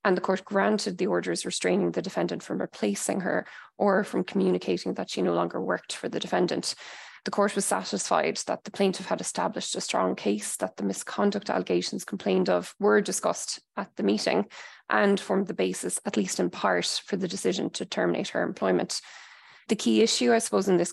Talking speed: 195 wpm